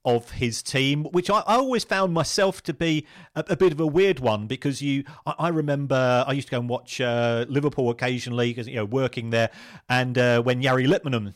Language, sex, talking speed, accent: English, male, 220 wpm, British